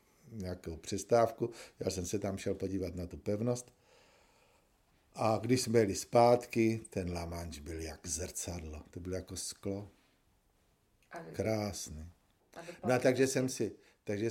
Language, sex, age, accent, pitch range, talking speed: Czech, male, 50-69, native, 95-115 Hz, 135 wpm